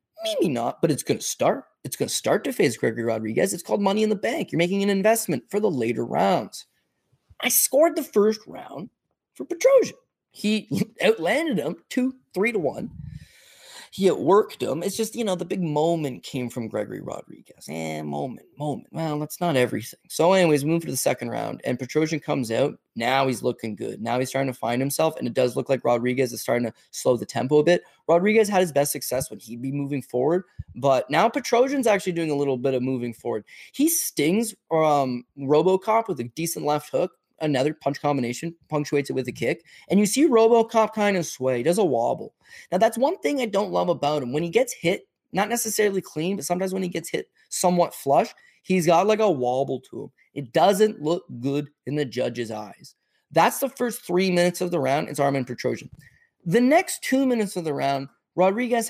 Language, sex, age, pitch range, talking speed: English, male, 20-39, 135-210 Hz, 210 wpm